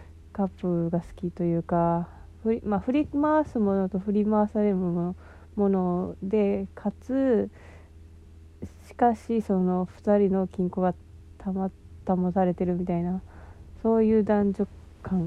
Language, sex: Japanese, female